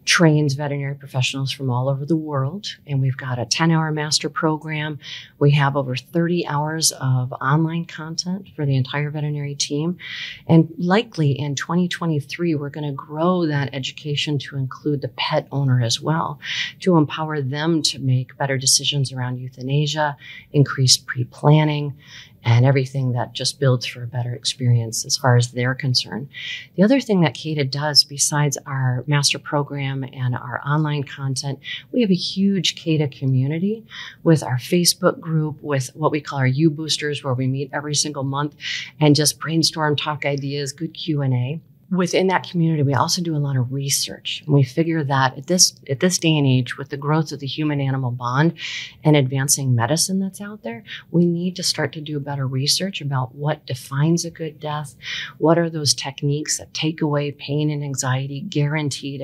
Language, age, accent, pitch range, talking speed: English, 40-59, American, 135-155 Hz, 175 wpm